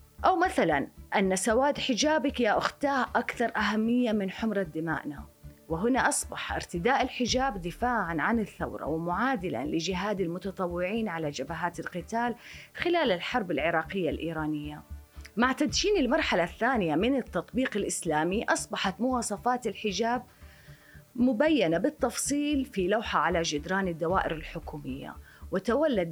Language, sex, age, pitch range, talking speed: Arabic, female, 30-49, 170-240 Hz, 110 wpm